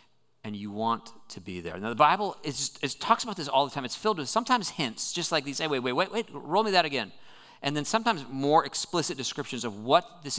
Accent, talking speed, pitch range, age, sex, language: American, 255 wpm, 120-165 Hz, 40-59, male, English